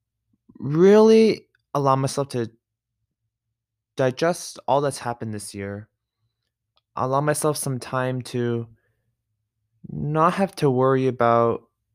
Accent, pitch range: American, 110-125 Hz